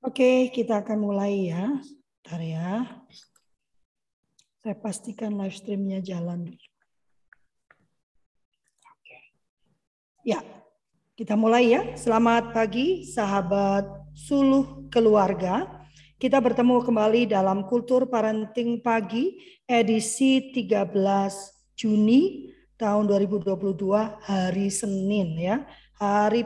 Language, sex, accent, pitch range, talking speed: Indonesian, female, native, 200-250 Hz, 85 wpm